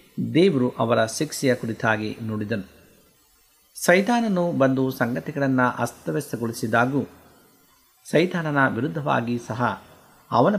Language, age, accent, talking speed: Kannada, 50-69, native, 75 wpm